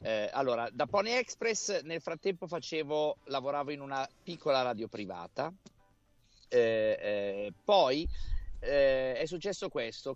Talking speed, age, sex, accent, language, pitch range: 125 wpm, 50-69, male, native, Italian, 110-160 Hz